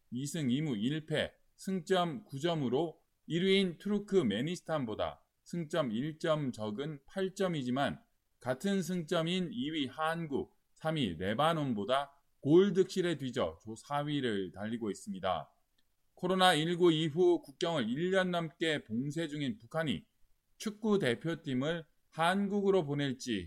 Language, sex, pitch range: Korean, male, 145-190 Hz